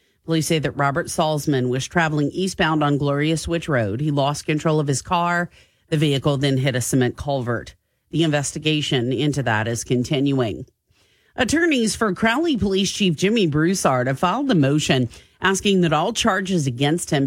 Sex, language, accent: female, English, American